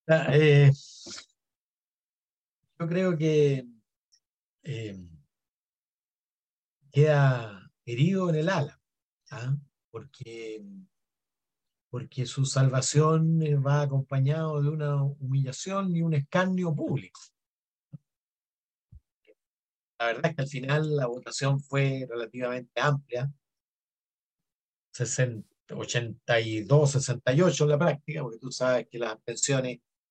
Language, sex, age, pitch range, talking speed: Spanish, male, 50-69, 125-150 Hz, 90 wpm